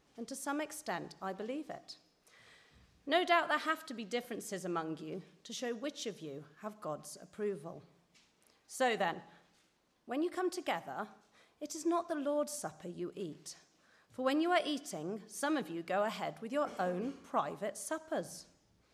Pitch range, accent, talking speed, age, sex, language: 180-275 Hz, British, 170 wpm, 40-59, female, English